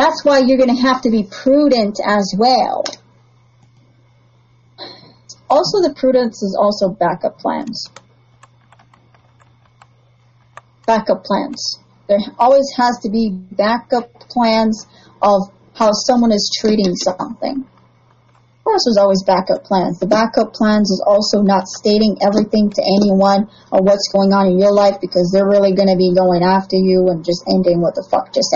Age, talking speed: 40-59, 150 wpm